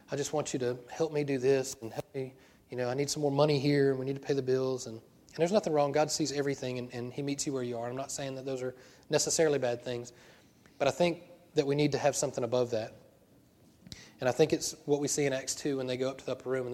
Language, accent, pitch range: English, American, 125-150 Hz